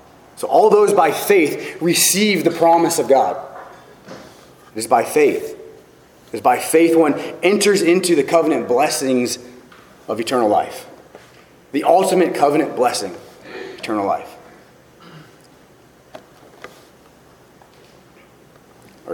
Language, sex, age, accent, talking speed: English, male, 30-49, American, 105 wpm